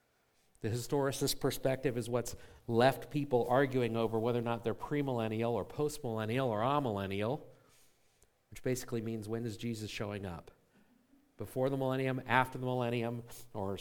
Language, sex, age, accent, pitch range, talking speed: English, male, 50-69, American, 120-150 Hz, 140 wpm